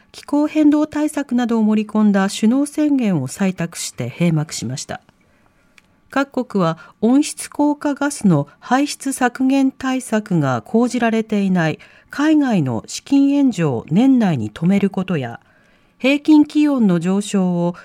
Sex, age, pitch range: female, 40-59, 175-275 Hz